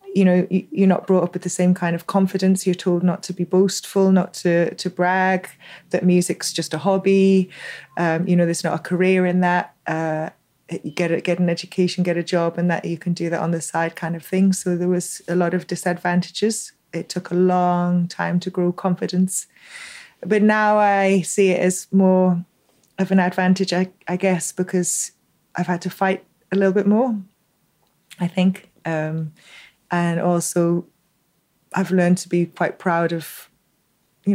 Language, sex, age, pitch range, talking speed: English, female, 20-39, 175-190 Hz, 190 wpm